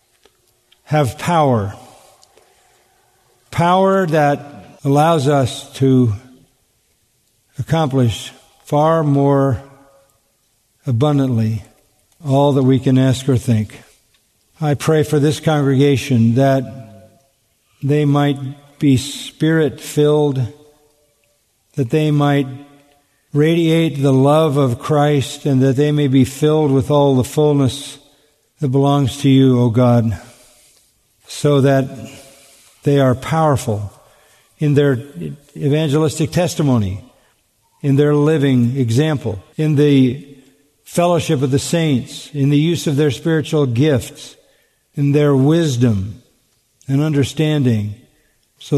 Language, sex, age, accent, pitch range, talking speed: English, male, 50-69, American, 125-150 Hz, 105 wpm